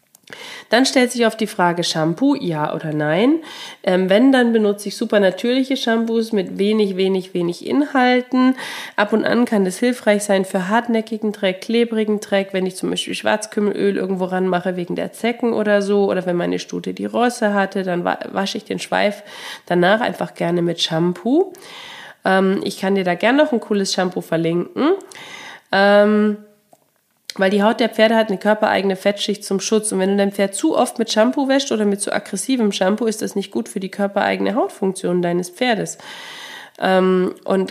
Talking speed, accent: 180 wpm, German